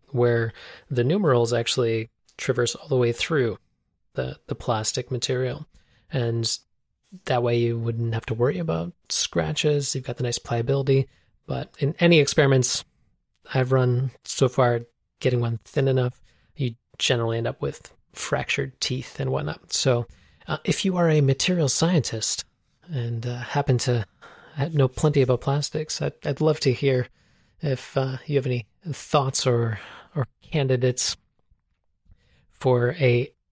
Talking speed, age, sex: 145 wpm, 20-39, male